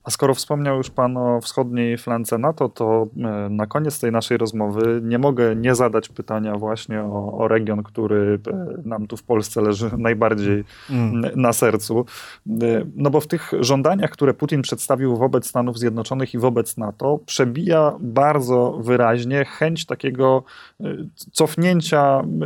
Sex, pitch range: male, 115-135 Hz